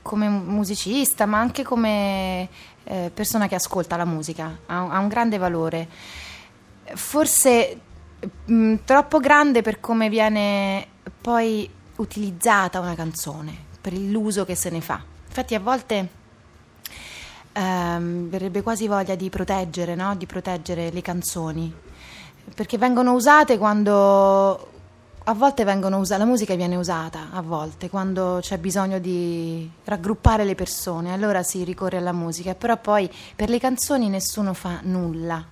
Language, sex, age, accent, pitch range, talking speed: Italian, female, 20-39, native, 180-220 Hz, 135 wpm